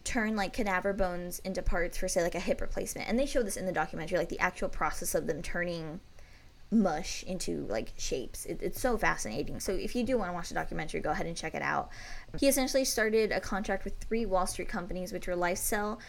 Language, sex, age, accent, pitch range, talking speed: English, female, 10-29, American, 180-215 Hz, 230 wpm